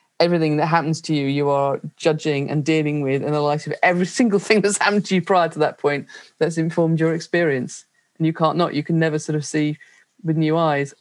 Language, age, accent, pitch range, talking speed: English, 30-49, British, 155-195 Hz, 235 wpm